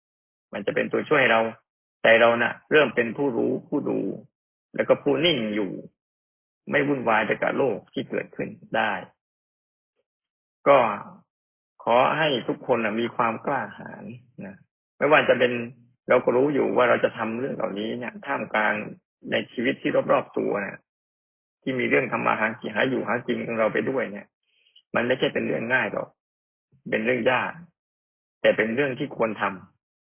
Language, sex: Thai, male